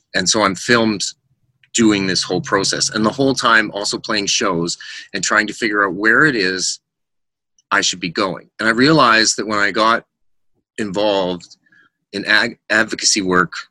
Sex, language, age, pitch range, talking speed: male, English, 30-49, 90-115 Hz, 165 wpm